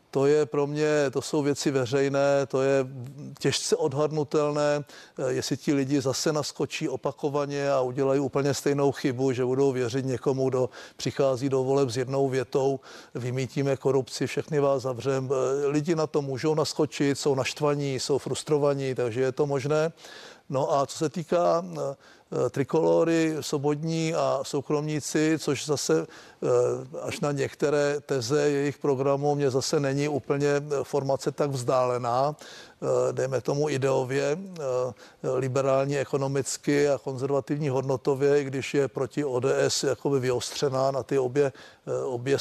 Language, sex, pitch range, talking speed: Czech, male, 135-145 Hz, 135 wpm